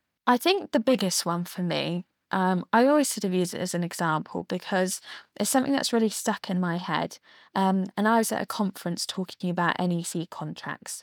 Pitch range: 180-225 Hz